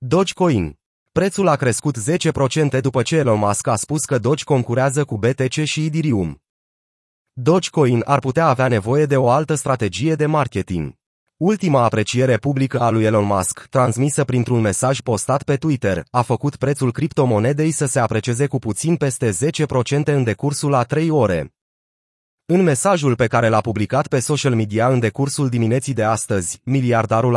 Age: 30-49